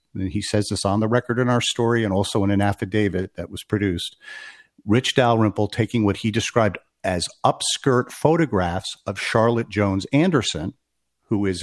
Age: 50-69